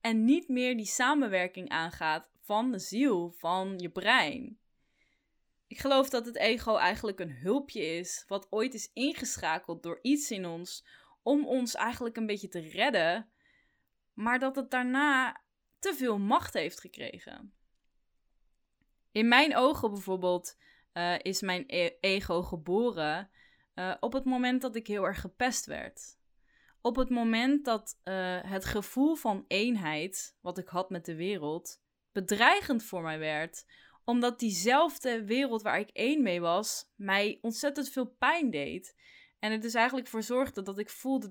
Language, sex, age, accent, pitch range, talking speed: Dutch, female, 20-39, Dutch, 190-255 Hz, 155 wpm